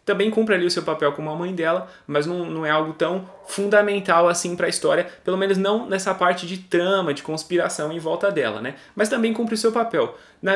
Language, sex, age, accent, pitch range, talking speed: Portuguese, male, 20-39, Brazilian, 175-225 Hz, 235 wpm